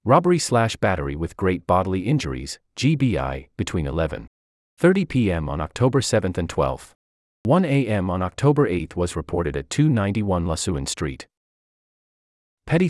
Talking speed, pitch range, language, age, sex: 130 wpm, 75-125 Hz, English, 30-49, male